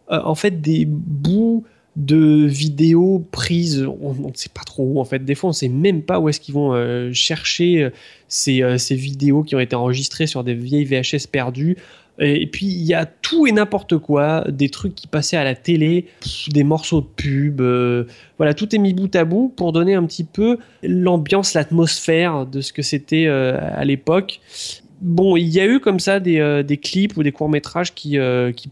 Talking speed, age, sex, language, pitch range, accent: 215 wpm, 20-39, male, French, 135-170 Hz, French